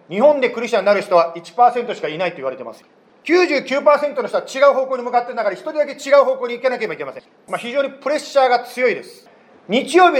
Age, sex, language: 40-59, male, Japanese